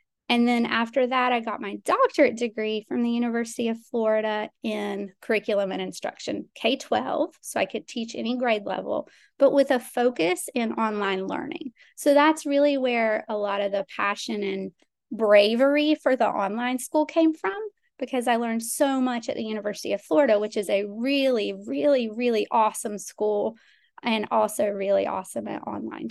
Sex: female